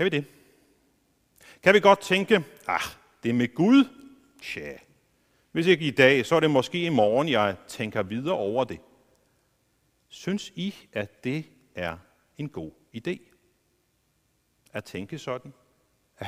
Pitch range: 120-165 Hz